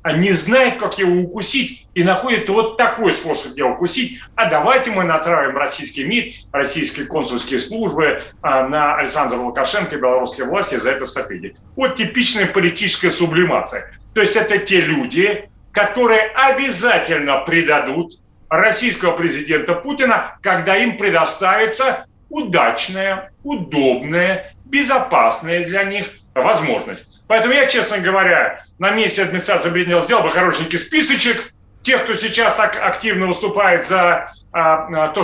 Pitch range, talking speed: 165-220 Hz, 125 wpm